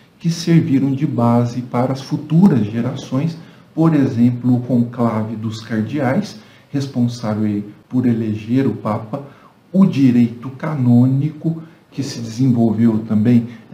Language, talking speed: Portuguese, 115 wpm